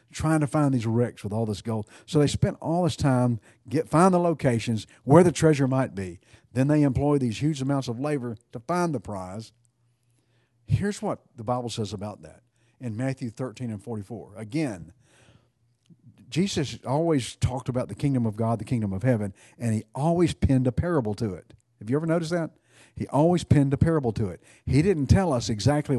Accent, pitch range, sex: American, 115-140 Hz, male